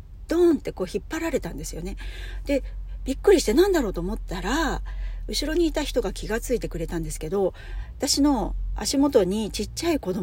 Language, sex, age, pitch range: Japanese, female, 40-59, 170-280 Hz